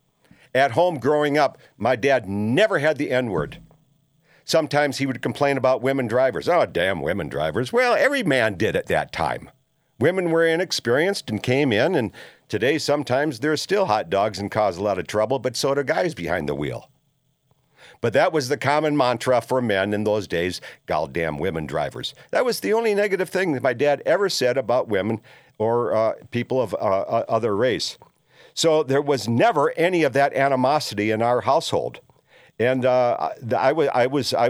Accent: American